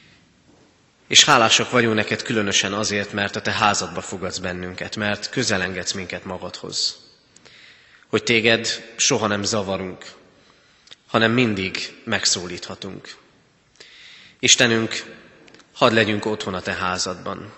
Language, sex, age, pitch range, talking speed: Hungarian, male, 30-49, 95-110 Hz, 105 wpm